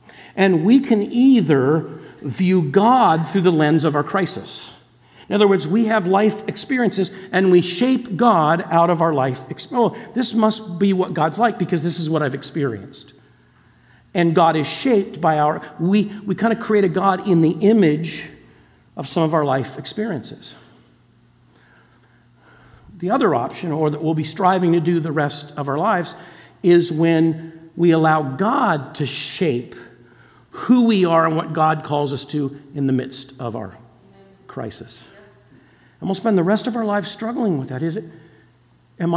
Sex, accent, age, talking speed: male, American, 50-69, 170 wpm